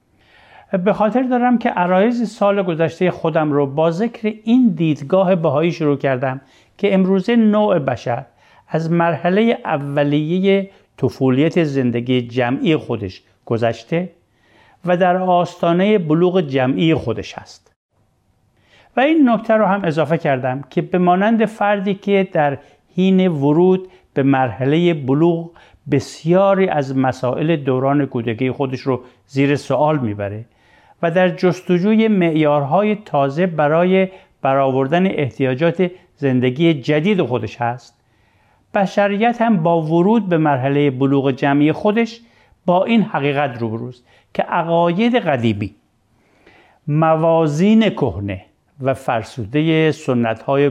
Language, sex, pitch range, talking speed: Persian, male, 135-185 Hz, 115 wpm